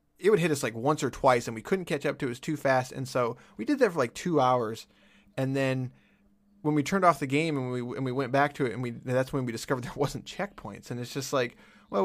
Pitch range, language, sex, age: 130-180 Hz, English, male, 20-39